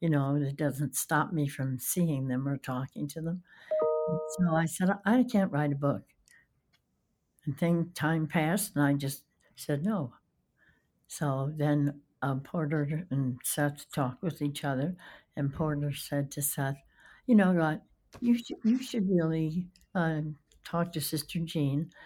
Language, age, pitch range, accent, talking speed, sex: English, 60-79, 135-165 Hz, American, 160 wpm, female